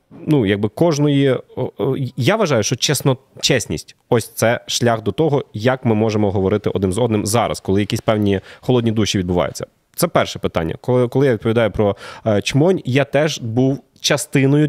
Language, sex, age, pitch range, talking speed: Ukrainian, male, 20-39, 105-140 Hz, 165 wpm